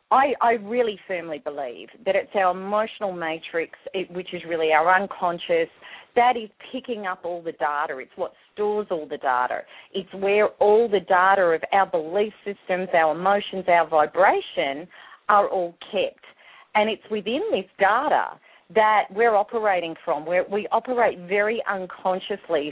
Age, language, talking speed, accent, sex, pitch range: 40-59, English, 150 wpm, Australian, female, 185-235 Hz